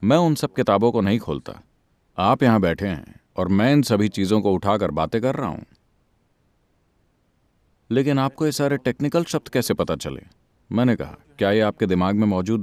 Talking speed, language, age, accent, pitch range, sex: 185 wpm, Hindi, 40-59, native, 95-125 Hz, male